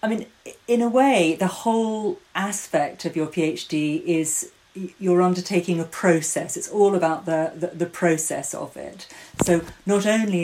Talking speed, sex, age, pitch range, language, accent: 160 wpm, female, 40-59, 160-180 Hz, English, British